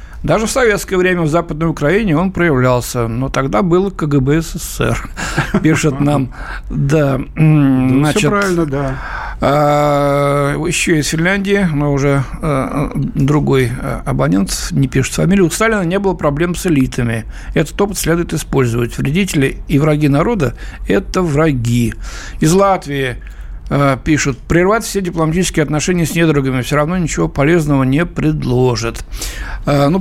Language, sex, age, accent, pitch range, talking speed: Russian, male, 60-79, native, 140-185 Hz, 125 wpm